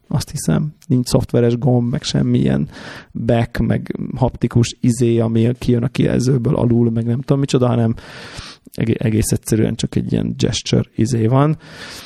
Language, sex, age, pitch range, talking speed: Hungarian, male, 30-49, 115-135 Hz, 145 wpm